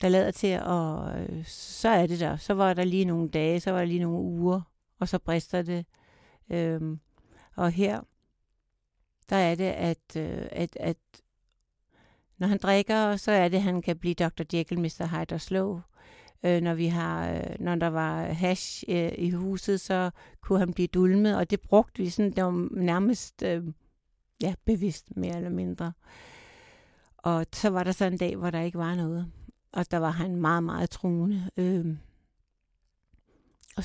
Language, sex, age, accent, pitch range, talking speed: Danish, female, 60-79, native, 165-190 Hz, 170 wpm